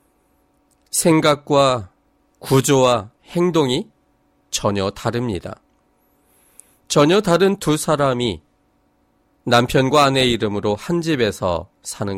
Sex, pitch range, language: male, 95-145 Hz, Korean